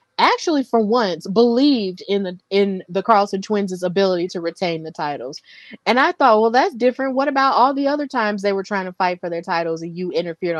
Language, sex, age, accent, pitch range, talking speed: English, female, 20-39, American, 185-235 Hz, 215 wpm